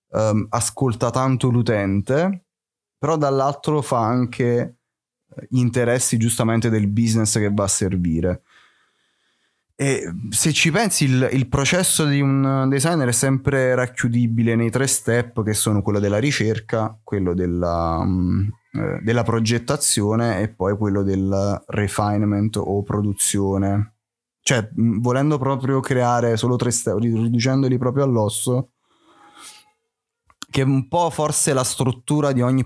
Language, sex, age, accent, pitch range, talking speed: Italian, male, 20-39, native, 105-130 Hz, 120 wpm